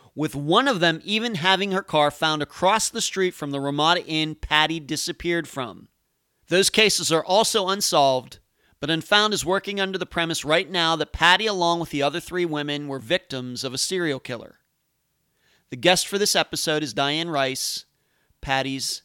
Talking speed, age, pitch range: 175 wpm, 40-59, 145-200 Hz